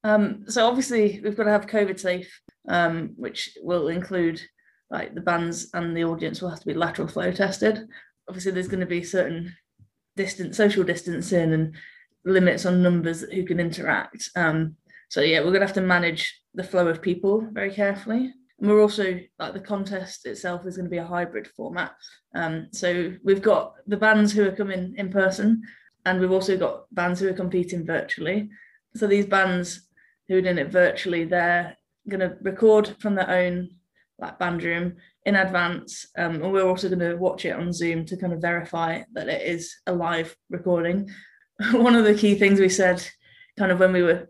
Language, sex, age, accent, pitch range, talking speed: English, female, 20-39, British, 175-205 Hz, 190 wpm